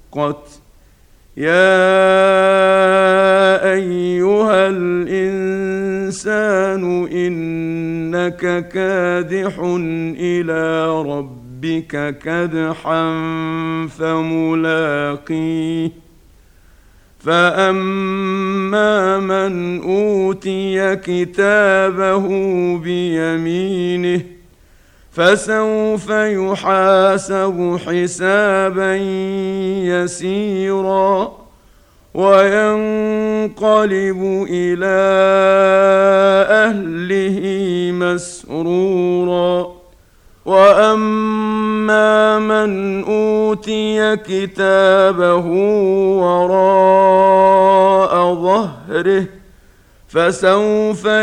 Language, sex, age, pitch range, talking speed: Arabic, male, 50-69, 175-195 Hz, 35 wpm